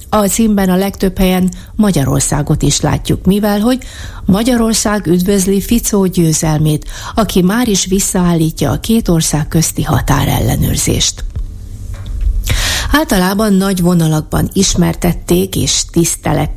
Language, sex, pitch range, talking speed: Hungarian, female, 150-190 Hz, 105 wpm